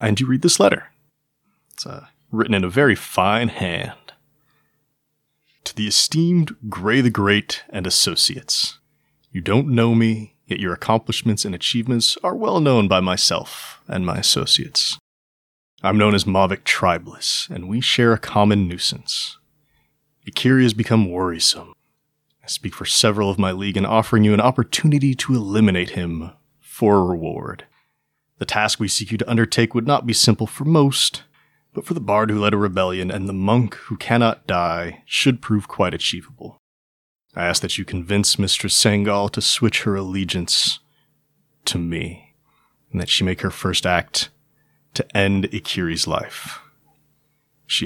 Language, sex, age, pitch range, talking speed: English, male, 30-49, 95-120 Hz, 160 wpm